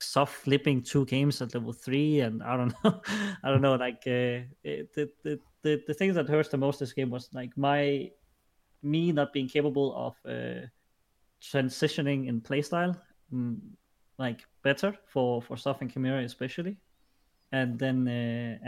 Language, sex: English, male